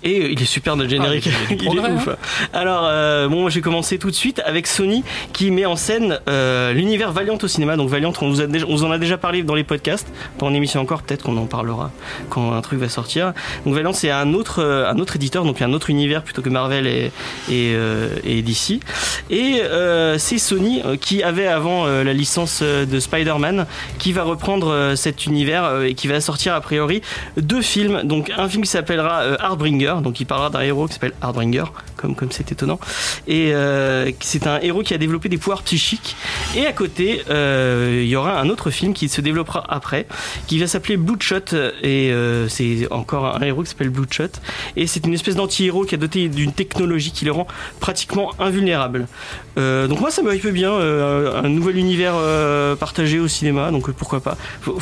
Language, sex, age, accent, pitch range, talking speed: French, male, 30-49, French, 140-185 Hz, 215 wpm